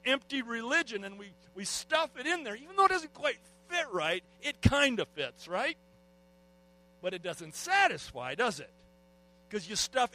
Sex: male